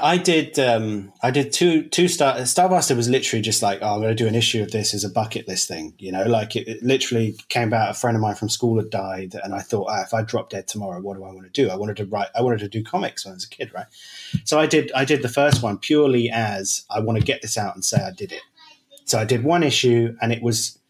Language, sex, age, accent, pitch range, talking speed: English, male, 30-49, British, 110-140 Hz, 295 wpm